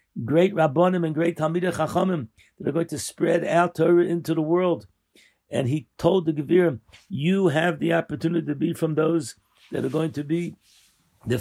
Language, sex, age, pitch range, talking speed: English, male, 60-79, 135-170 Hz, 180 wpm